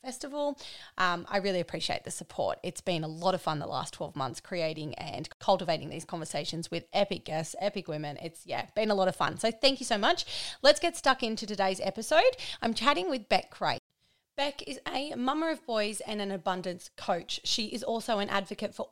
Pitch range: 185-250 Hz